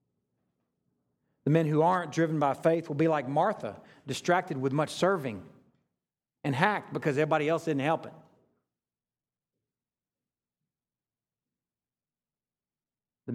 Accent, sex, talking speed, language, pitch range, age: American, male, 110 wpm, English, 130-185 Hz, 40-59